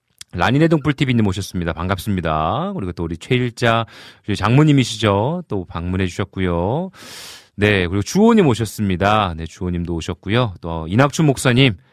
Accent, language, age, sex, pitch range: native, Korean, 40-59, male, 95-155 Hz